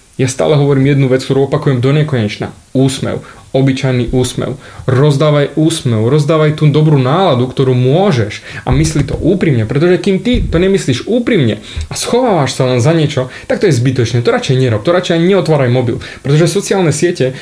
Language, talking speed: Slovak, 170 wpm